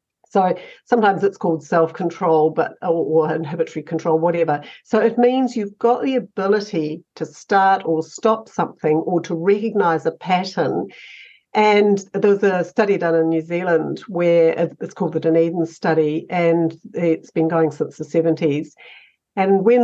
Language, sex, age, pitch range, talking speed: English, female, 50-69, 165-215 Hz, 150 wpm